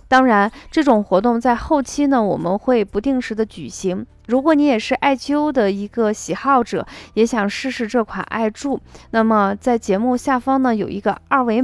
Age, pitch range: 20-39, 200-255 Hz